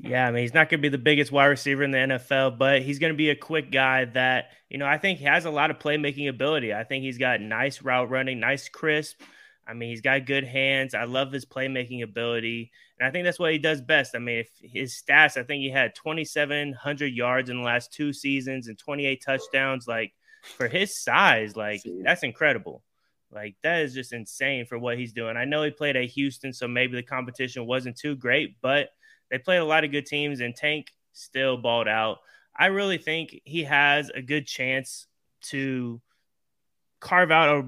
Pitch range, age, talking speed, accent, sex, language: 125-145 Hz, 20-39, 215 wpm, American, male, English